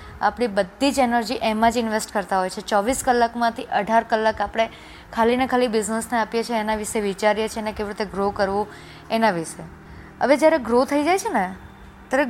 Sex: female